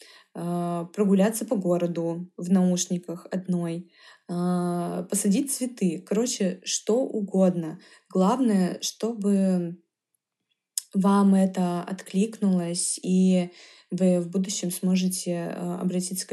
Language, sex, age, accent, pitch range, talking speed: Russian, female, 20-39, native, 185-225 Hz, 85 wpm